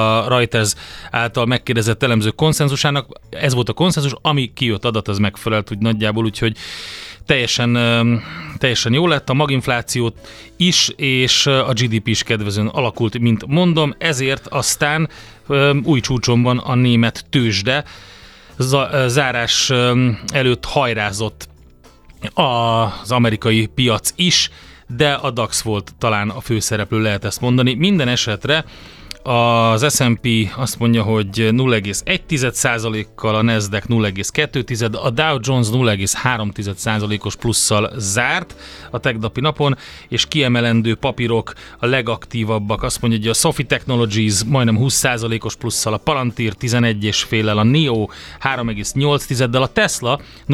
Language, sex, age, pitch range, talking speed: Hungarian, male, 30-49, 110-130 Hz, 120 wpm